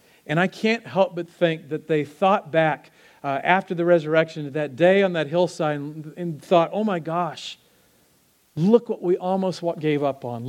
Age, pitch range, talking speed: 40-59, 145-180 Hz, 175 wpm